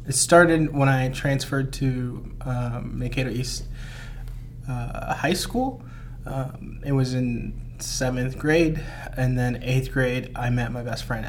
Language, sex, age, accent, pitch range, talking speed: English, male, 20-39, American, 120-135 Hz, 145 wpm